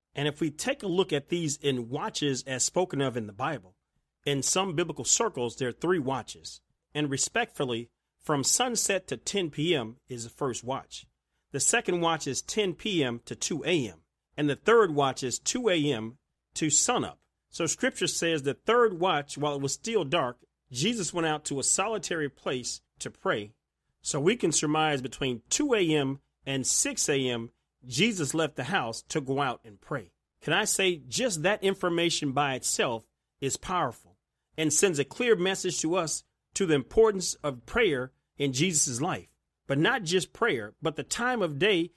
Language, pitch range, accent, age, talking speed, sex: English, 135-180 Hz, American, 40-59, 180 wpm, male